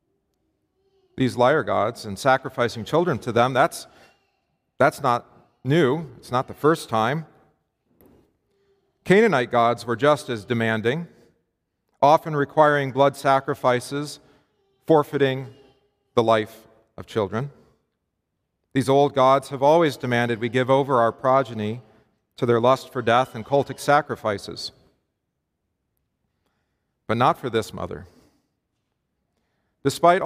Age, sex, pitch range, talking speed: 40-59, male, 115-150 Hz, 115 wpm